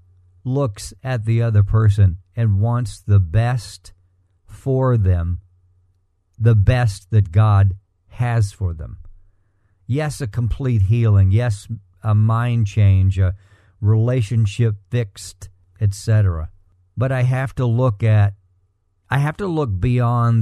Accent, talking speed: American, 120 wpm